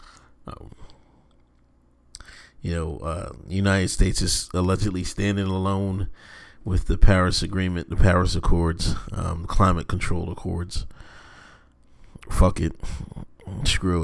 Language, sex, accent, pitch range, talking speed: English, male, American, 85-110 Hz, 105 wpm